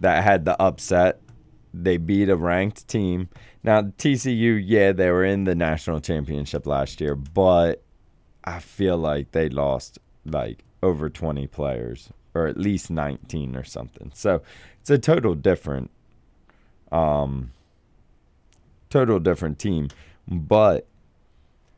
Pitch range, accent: 75-105 Hz, American